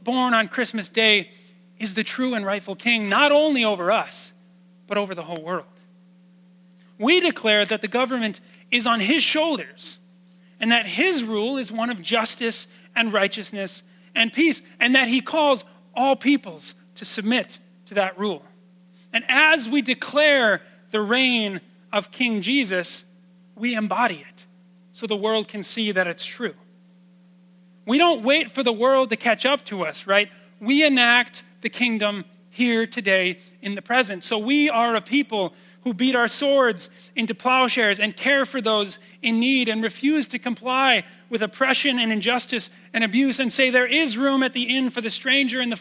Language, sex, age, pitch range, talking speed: English, male, 40-59, 185-255 Hz, 175 wpm